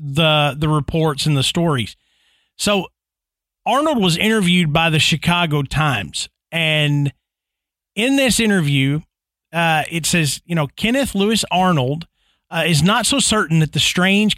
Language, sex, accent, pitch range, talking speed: English, male, American, 150-210 Hz, 140 wpm